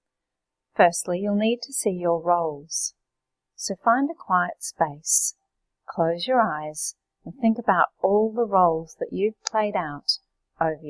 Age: 40-59